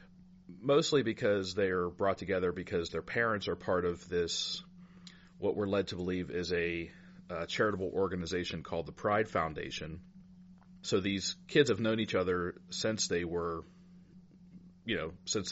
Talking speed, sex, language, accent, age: 155 wpm, male, English, American, 40-59